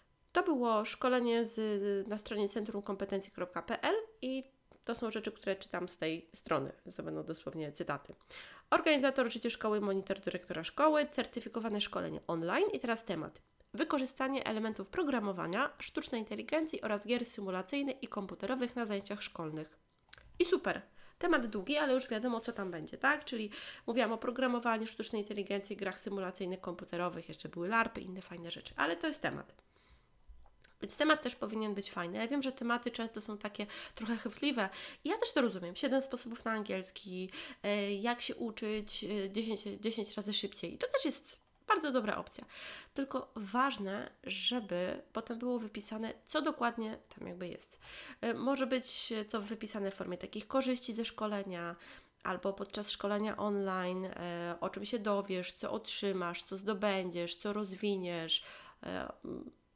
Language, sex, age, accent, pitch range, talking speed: Polish, female, 20-39, native, 195-250 Hz, 150 wpm